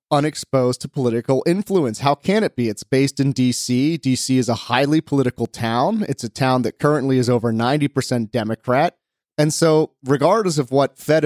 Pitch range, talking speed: 120-150 Hz, 180 wpm